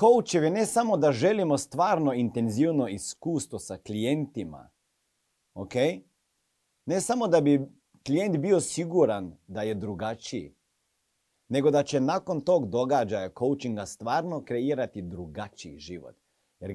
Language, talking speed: Croatian, 120 wpm